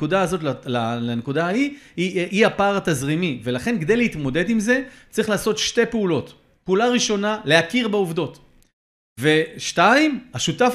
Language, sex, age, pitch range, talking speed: Hebrew, male, 30-49, 150-195 Hz, 130 wpm